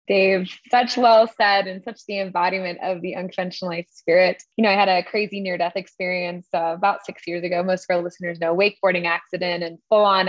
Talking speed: 200 wpm